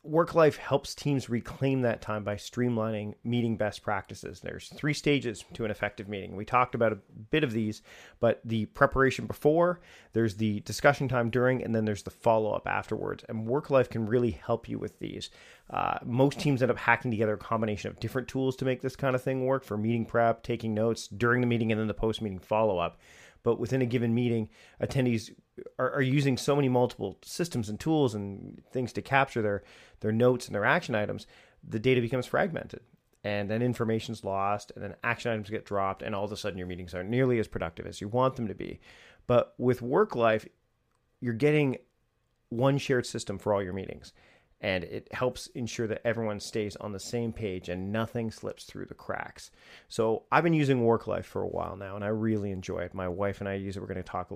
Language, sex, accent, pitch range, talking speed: English, male, American, 105-125 Hz, 215 wpm